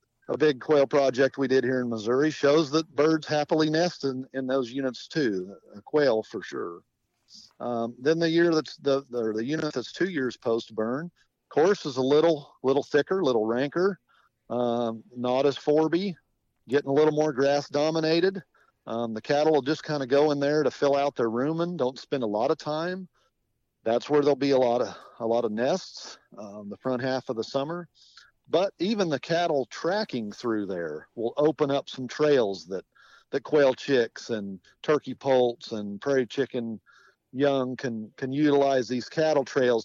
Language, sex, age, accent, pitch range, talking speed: English, male, 50-69, American, 120-155 Hz, 185 wpm